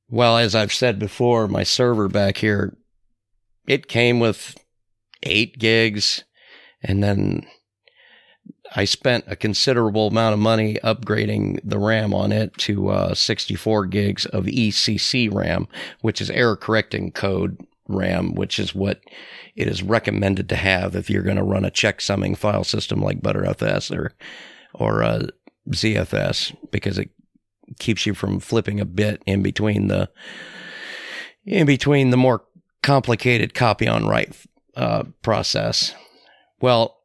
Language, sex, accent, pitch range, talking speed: English, male, American, 100-115 Hz, 140 wpm